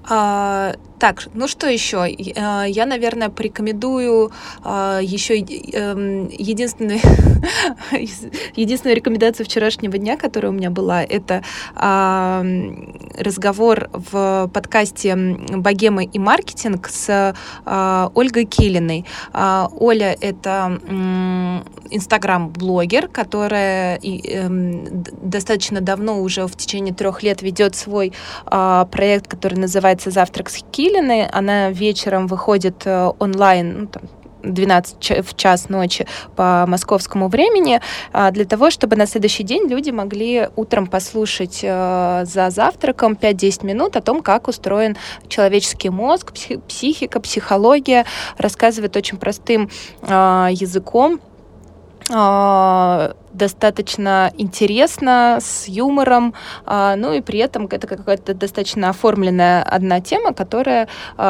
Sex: female